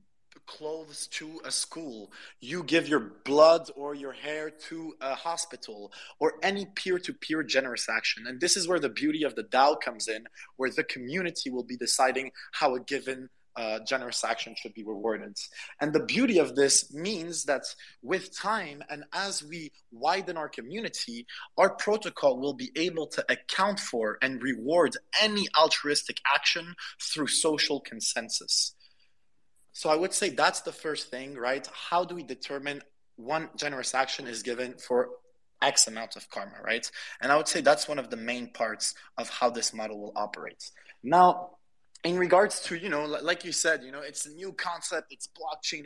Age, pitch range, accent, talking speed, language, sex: 20-39, 130-180 Hz, Canadian, 175 wpm, English, male